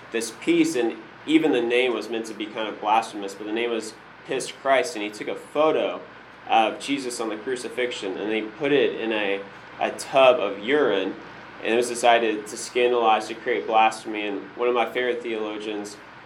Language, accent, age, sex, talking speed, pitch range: English, American, 20-39, male, 200 wpm, 105-125 Hz